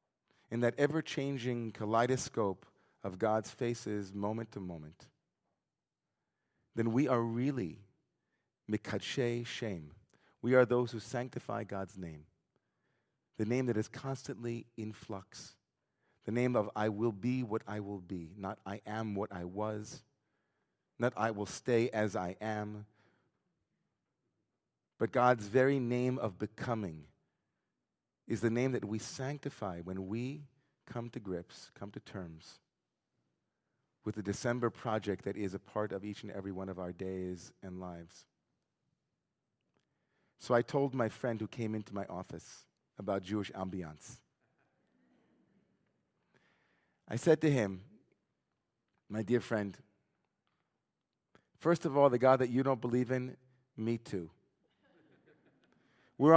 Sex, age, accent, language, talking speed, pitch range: male, 40-59, American, English, 130 wpm, 100-125 Hz